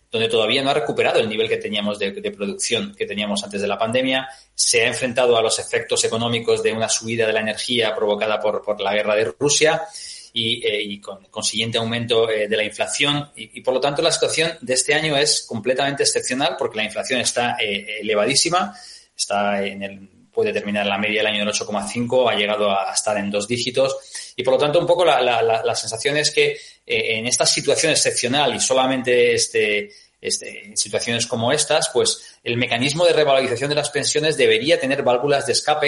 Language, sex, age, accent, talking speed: Spanish, male, 20-39, Spanish, 205 wpm